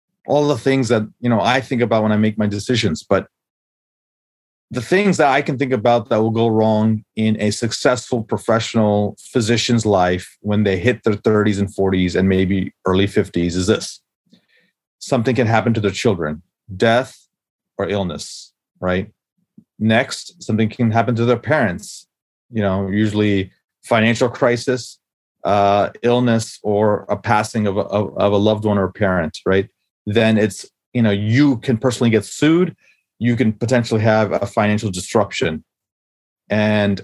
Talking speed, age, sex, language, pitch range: 160 wpm, 30-49, male, English, 105-125 Hz